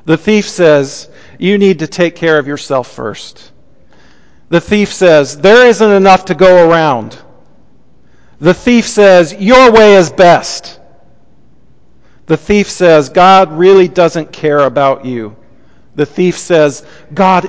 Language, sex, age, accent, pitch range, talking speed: English, male, 50-69, American, 140-190 Hz, 135 wpm